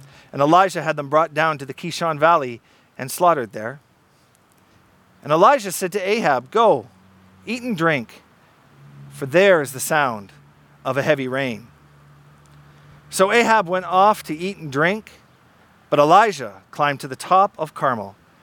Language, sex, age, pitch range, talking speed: English, male, 40-59, 135-185 Hz, 155 wpm